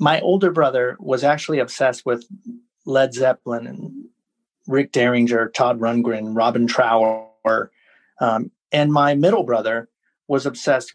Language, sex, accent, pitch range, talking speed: English, male, American, 130-180 Hz, 125 wpm